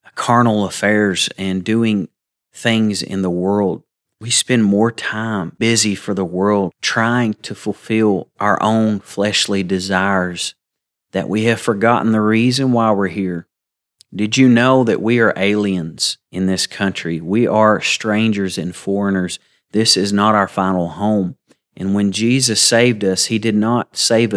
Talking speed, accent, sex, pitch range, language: 155 wpm, American, male, 95-120 Hz, English